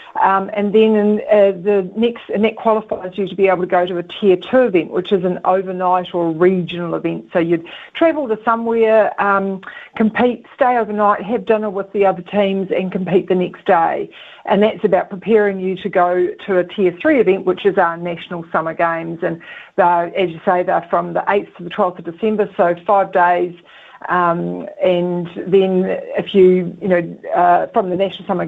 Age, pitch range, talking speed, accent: 50-69, 175-205 Hz, 195 wpm, Australian